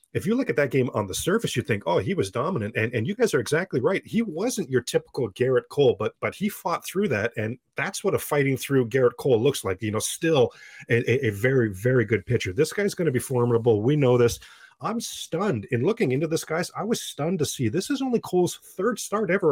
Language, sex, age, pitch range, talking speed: English, male, 30-49, 115-160 Hz, 250 wpm